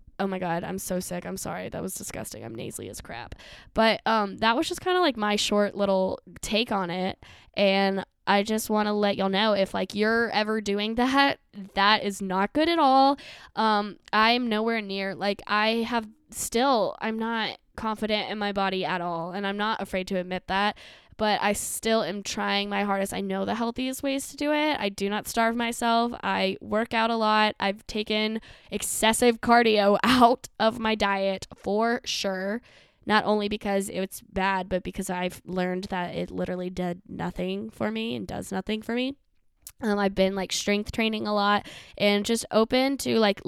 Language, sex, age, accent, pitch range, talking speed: English, female, 10-29, American, 195-225 Hz, 195 wpm